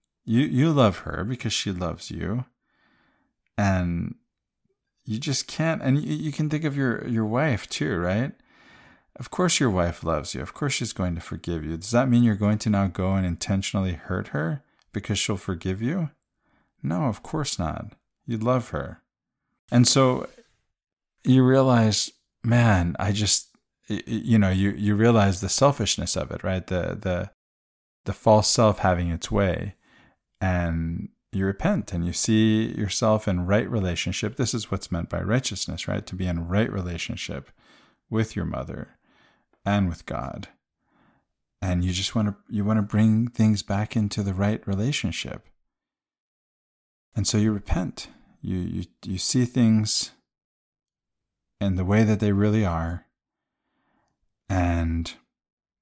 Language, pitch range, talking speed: English, 90-120 Hz, 155 wpm